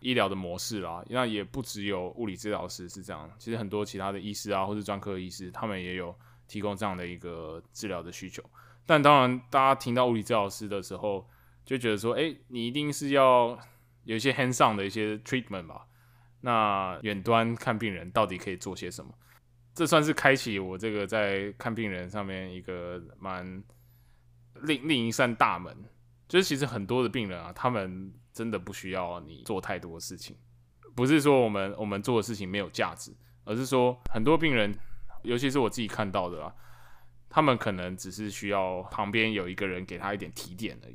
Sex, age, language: male, 20-39, Chinese